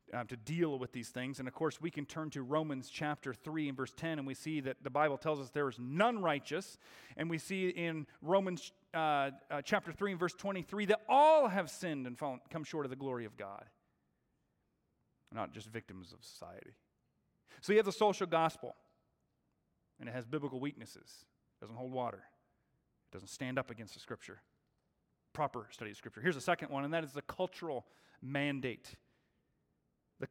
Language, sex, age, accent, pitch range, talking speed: English, male, 40-59, American, 140-190 Hz, 190 wpm